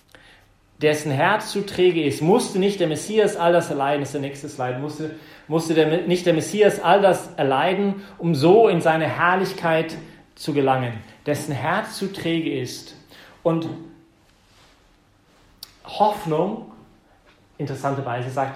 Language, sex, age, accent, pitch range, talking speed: English, male, 40-59, German, 135-175 Hz, 135 wpm